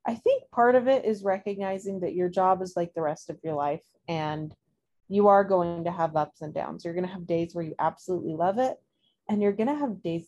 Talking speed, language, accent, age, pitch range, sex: 245 wpm, English, American, 20-39, 165-190 Hz, female